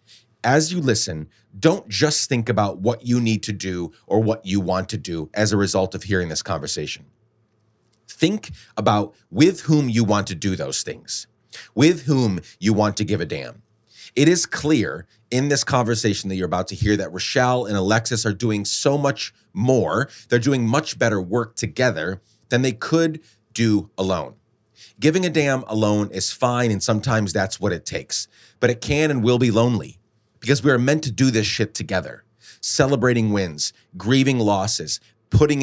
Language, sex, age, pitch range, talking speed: English, male, 30-49, 100-125 Hz, 180 wpm